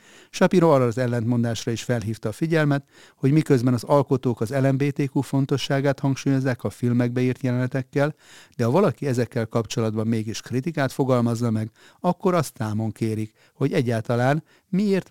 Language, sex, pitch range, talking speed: Hungarian, male, 115-140 Hz, 145 wpm